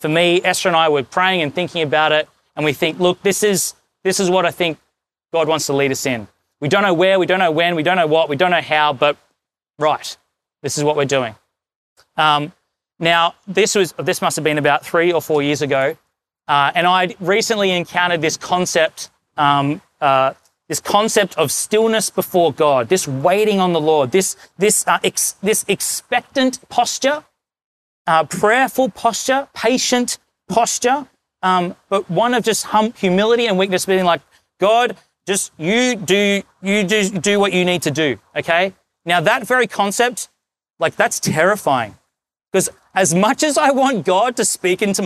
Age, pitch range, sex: 30-49, 160-215 Hz, male